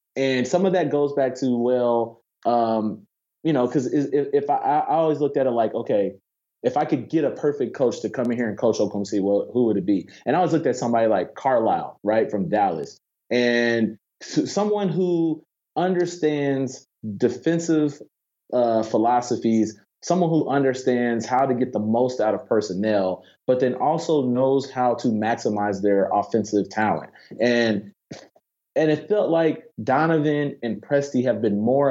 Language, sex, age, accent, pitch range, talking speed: English, male, 30-49, American, 110-145 Hz, 175 wpm